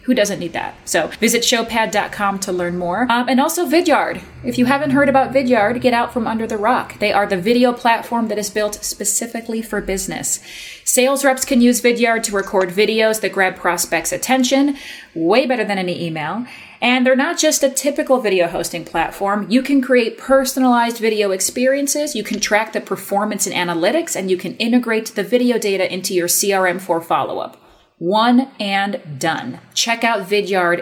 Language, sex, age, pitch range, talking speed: English, female, 30-49, 185-245 Hz, 185 wpm